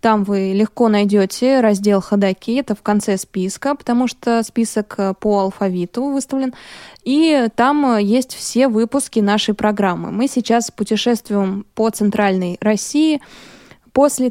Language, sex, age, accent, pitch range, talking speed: Russian, female, 20-39, native, 195-245 Hz, 125 wpm